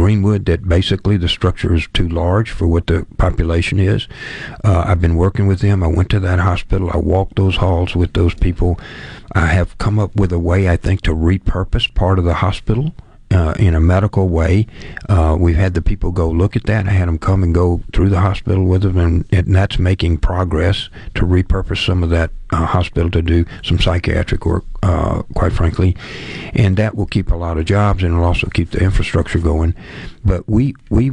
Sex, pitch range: male, 85-100 Hz